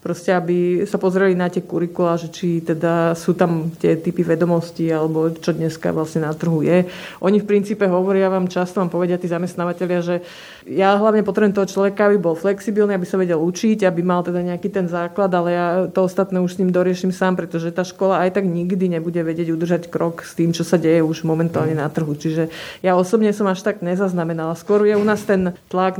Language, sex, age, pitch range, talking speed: Slovak, female, 30-49, 165-185 Hz, 210 wpm